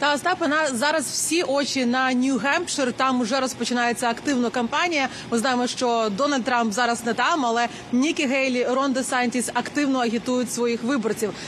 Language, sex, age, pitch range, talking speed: Ukrainian, female, 30-49, 255-310 Hz, 150 wpm